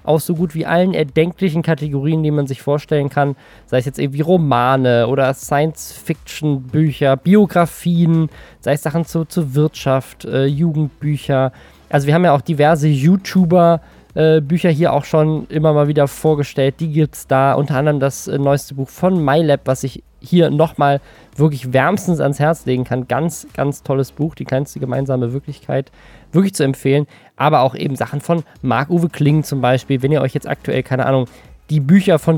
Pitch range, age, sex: 135-170 Hz, 20-39, male